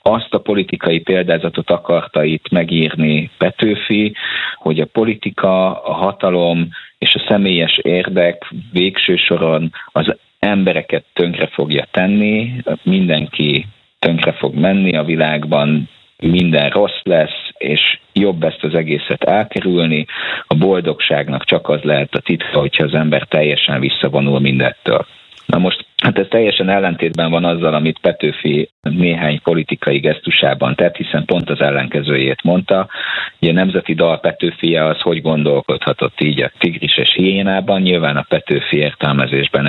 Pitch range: 75-90 Hz